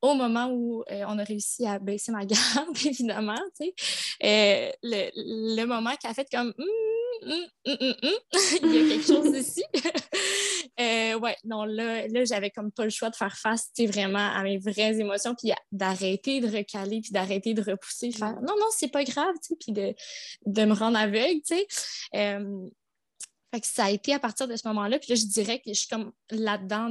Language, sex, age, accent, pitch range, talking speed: French, female, 20-39, Canadian, 205-250 Hz, 215 wpm